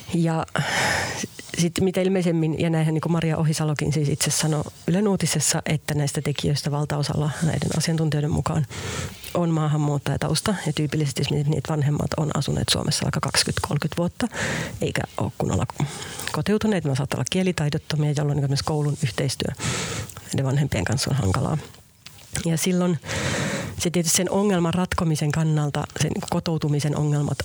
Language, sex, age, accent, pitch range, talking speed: Finnish, female, 40-59, native, 145-165 Hz, 135 wpm